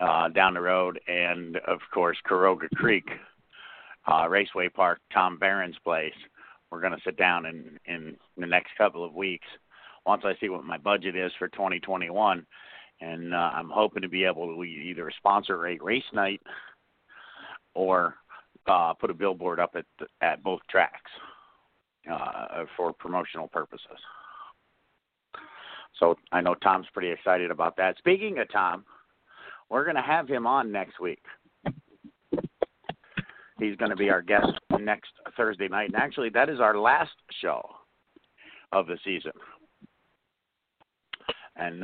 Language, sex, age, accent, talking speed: English, male, 50-69, American, 150 wpm